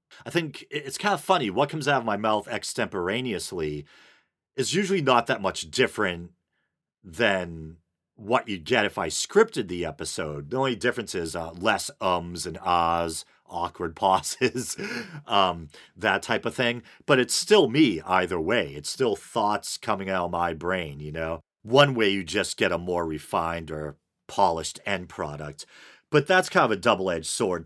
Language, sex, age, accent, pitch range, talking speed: English, male, 40-59, American, 80-110 Hz, 170 wpm